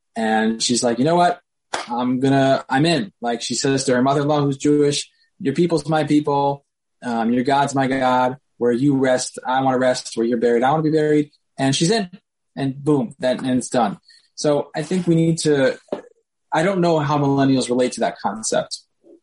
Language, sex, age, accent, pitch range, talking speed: English, male, 20-39, American, 120-150 Hz, 205 wpm